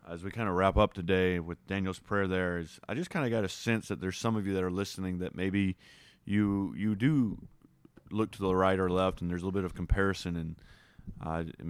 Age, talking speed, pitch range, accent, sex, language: 30-49, 240 wpm, 95-120 Hz, American, male, English